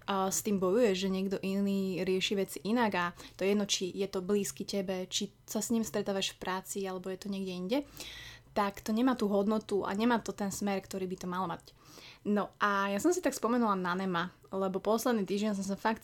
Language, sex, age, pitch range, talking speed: Slovak, female, 20-39, 190-215 Hz, 225 wpm